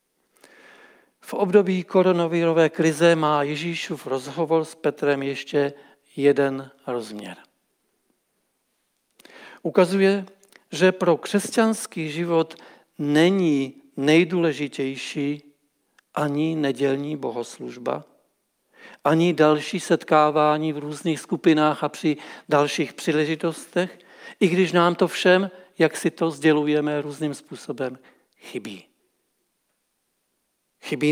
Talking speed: 85 wpm